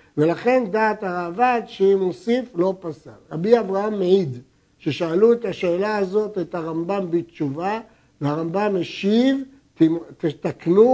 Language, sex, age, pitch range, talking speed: Hebrew, male, 60-79, 170-235 Hz, 110 wpm